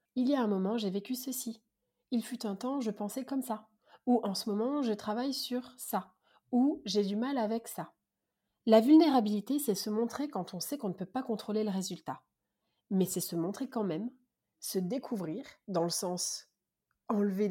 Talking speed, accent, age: 195 wpm, French, 30-49